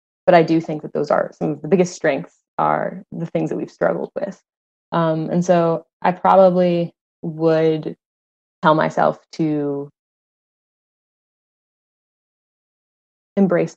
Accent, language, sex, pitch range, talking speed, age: American, English, female, 145-175 Hz, 125 wpm, 20-39